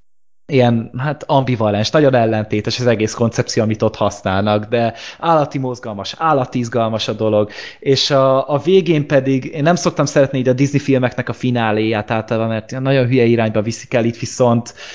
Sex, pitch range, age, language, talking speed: male, 110-135 Hz, 20-39, Hungarian, 170 wpm